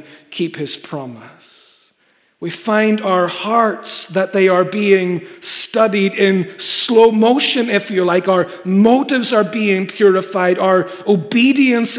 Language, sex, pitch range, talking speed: English, male, 175-220 Hz, 125 wpm